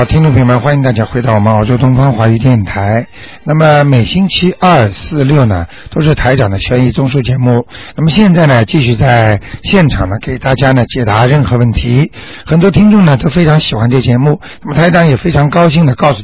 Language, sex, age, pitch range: Chinese, male, 60-79, 120-150 Hz